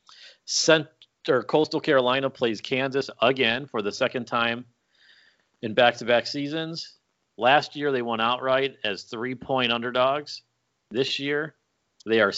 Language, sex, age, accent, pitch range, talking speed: English, male, 40-59, American, 100-135 Hz, 125 wpm